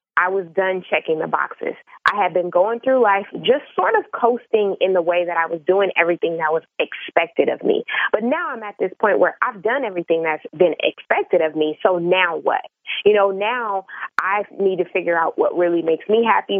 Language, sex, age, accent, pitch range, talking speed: English, female, 20-39, American, 175-230 Hz, 215 wpm